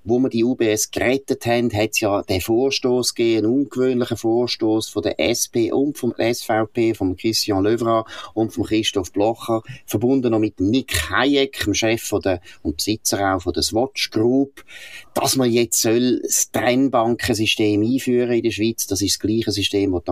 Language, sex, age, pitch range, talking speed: German, male, 30-49, 105-130 Hz, 180 wpm